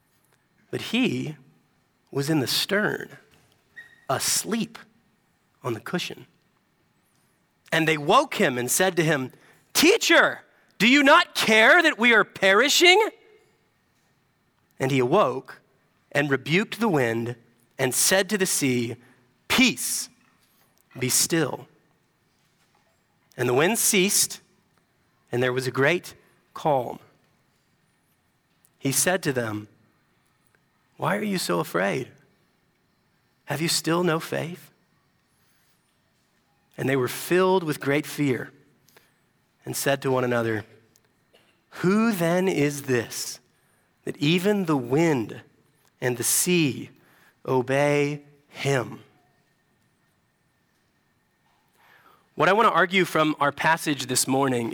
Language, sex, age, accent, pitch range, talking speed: English, male, 40-59, American, 125-185 Hz, 110 wpm